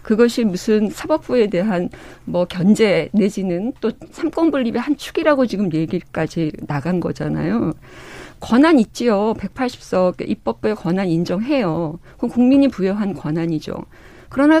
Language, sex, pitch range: Korean, female, 185-280 Hz